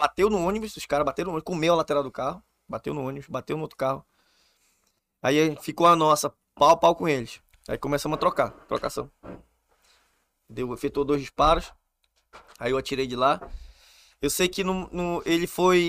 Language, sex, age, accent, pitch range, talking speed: Portuguese, male, 20-39, Brazilian, 130-170 Hz, 185 wpm